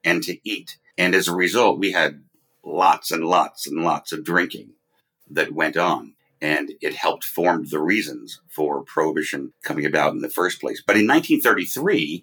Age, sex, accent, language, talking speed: 50-69, male, American, English, 175 wpm